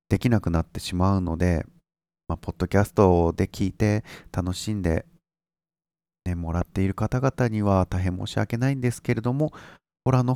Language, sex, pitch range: Japanese, male, 90-125 Hz